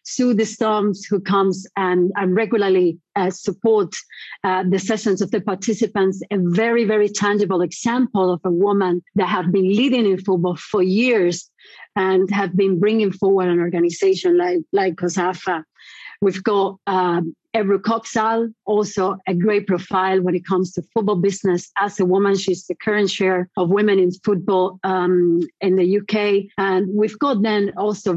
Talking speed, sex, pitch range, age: 165 wpm, female, 185-210 Hz, 40-59